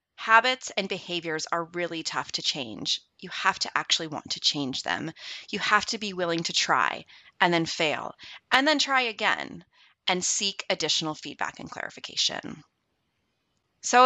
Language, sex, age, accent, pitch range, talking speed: English, female, 30-49, American, 170-255 Hz, 160 wpm